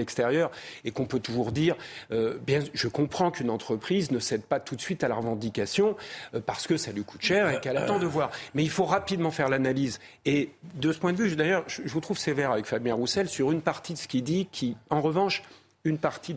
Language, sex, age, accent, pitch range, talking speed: French, male, 40-59, French, 125-175 Hz, 245 wpm